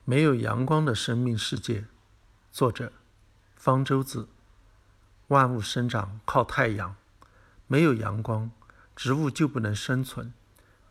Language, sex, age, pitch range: Chinese, male, 60-79, 105-130 Hz